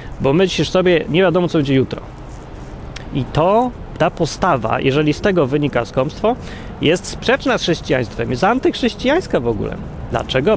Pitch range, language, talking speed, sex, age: 130-180 Hz, Polish, 150 wpm, male, 30-49